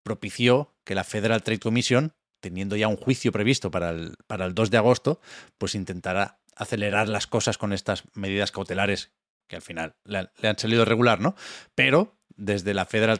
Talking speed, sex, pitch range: 175 wpm, male, 100-125 Hz